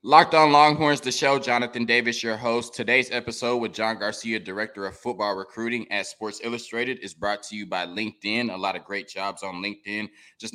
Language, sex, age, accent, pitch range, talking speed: English, male, 20-39, American, 105-125 Hz, 200 wpm